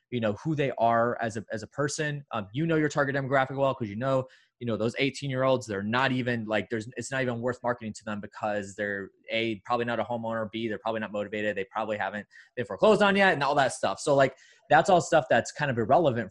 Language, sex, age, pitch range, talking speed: English, male, 20-39, 110-135 Hz, 260 wpm